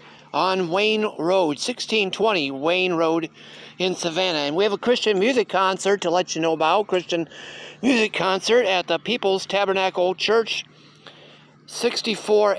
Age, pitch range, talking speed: 50-69, 175-215 Hz, 140 wpm